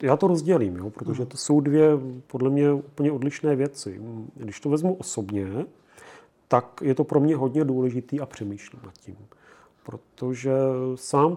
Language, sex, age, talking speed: Czech, male, 40-59, 160 wpm